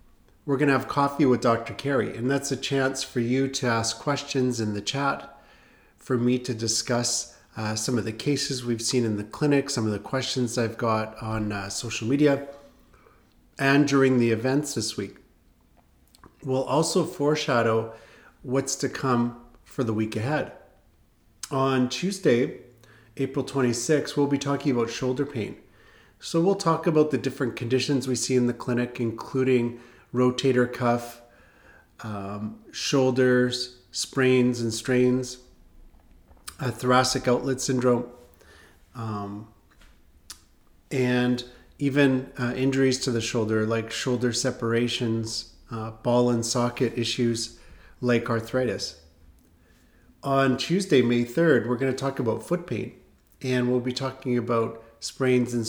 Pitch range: 115-130 Hz